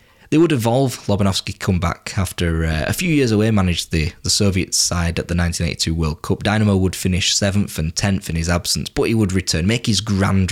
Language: English